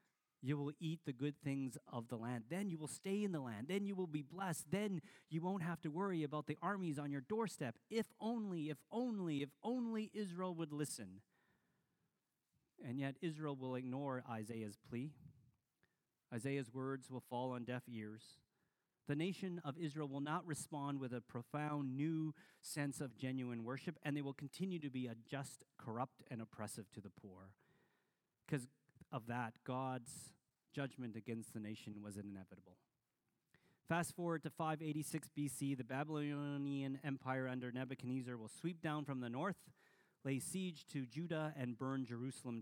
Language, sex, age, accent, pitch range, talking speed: English, male, 40-59, American, 125-165 Hz, 165 wpm